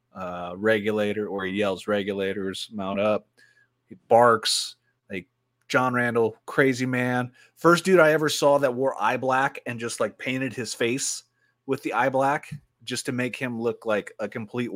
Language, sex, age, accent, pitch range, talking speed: English, male, 30-49, American, 110-130 Hz, 170 wpm